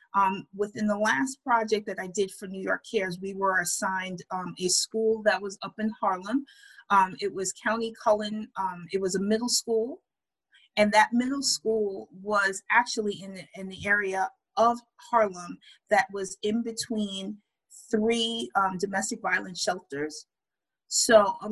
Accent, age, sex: American, 30-49, female